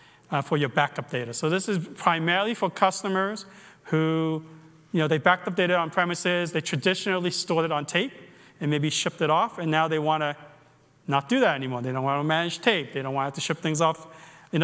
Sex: male